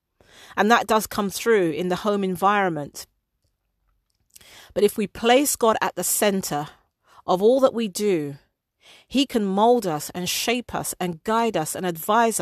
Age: 40-59